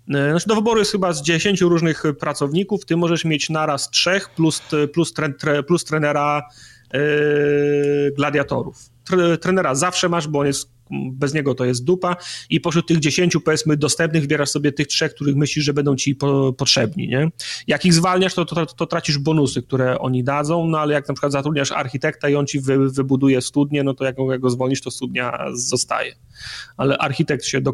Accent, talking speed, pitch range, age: native, 190 wpm, 135-160 Hz, 30-49